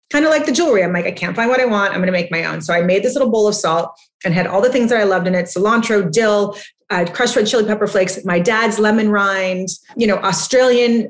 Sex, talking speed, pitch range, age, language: female, 280 wpm, 175-225 Hz, 30-49, English